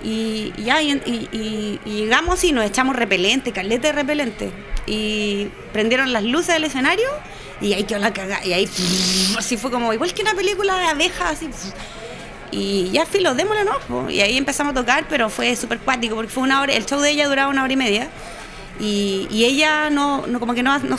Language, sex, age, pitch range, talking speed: Spanish, female, 30-49, 235-305 Hz, 210 wpm